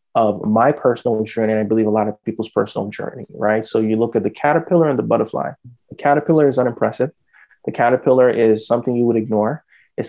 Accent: American